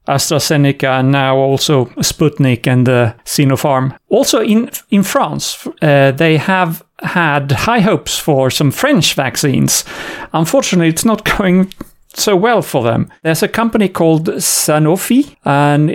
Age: 40-59